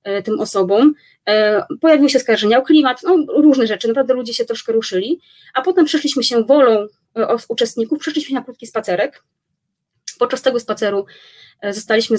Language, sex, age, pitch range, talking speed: Polish, female, 20-39, 215-250 Hz, 140 wpm